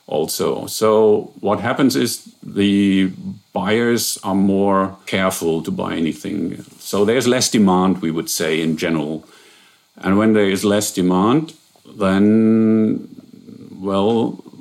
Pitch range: 95-110 Hz